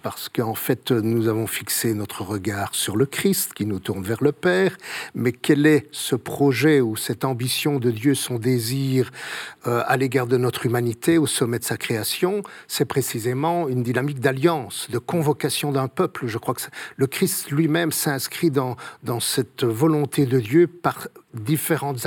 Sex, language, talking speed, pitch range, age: male, French, 175 wpm, 120-155 Hz, 50-69